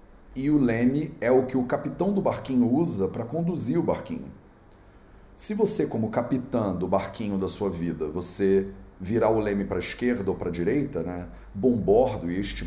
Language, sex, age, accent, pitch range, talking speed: English, male, 30-49, Brazilian, 95-140 Hz, 190 wpm